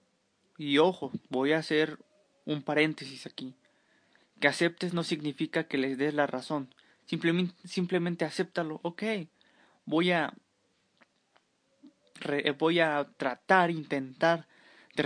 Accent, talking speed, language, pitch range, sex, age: Mexican, 115 wpm, Spanish, 145-170 Hz, male, 20-39